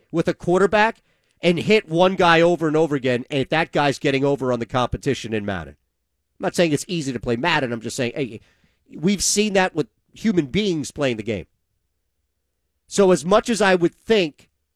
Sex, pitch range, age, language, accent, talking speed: male, 105-165 Hz, 50-69, English, American, 205 wpm